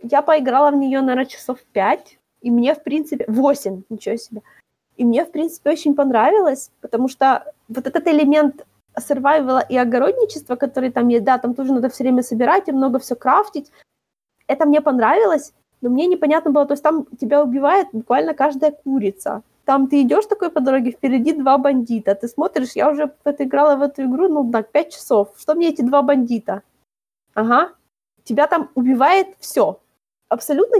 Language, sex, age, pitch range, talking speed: Ukrainian, female, 20-39, 245-300 Hz, 175 wpm